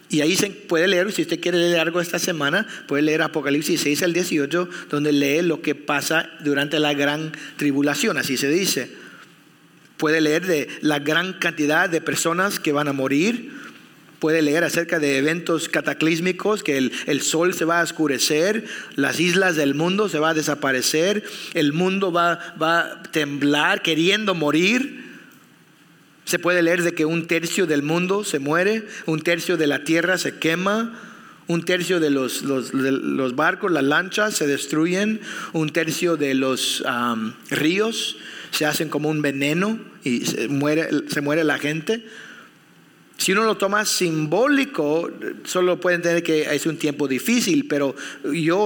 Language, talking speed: English, 165 wpm